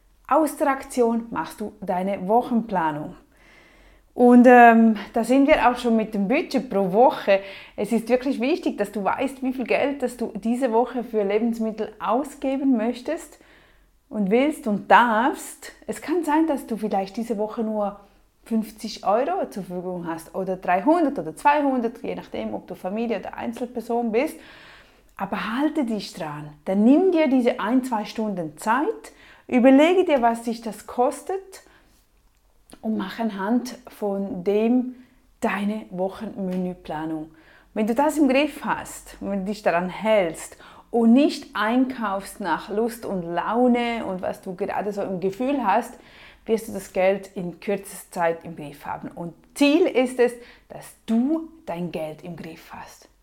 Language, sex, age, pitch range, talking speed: German, female, 30-49, 195-260 Hz, 155 wpm